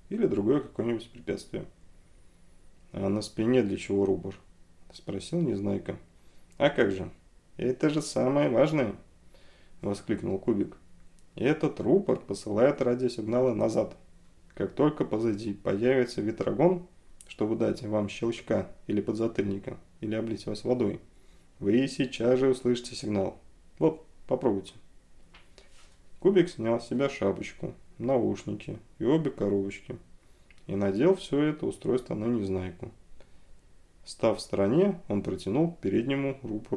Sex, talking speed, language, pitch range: male, 115 wpm, Russian, 95-125 Hz